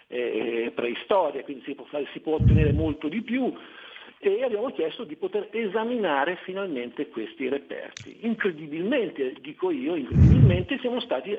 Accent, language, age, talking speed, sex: native, Italian, 50-69, 130 wpm, male